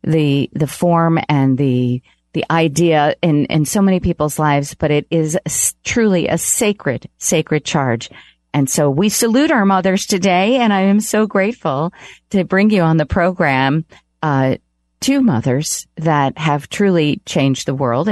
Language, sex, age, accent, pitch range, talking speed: English, female, 40-59, American, 150-210 Hz, 160 wpm